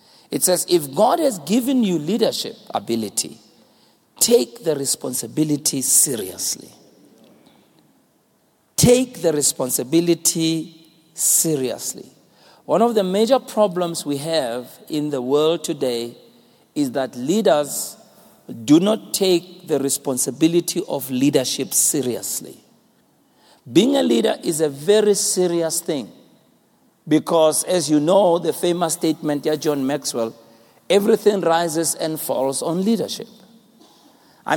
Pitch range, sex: 135-175 Hz, male